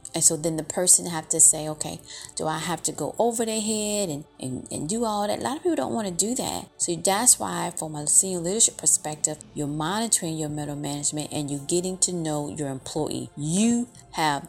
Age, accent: 30-49, American